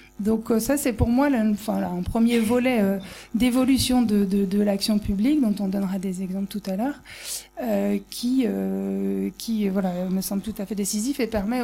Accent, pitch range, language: French, 200-235 Hz, French